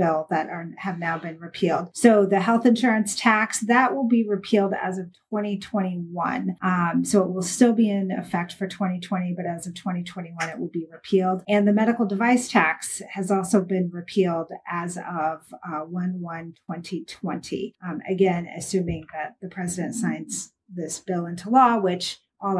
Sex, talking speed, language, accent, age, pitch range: female, 160 wpm, English, American, 40-59, 175-205 Hz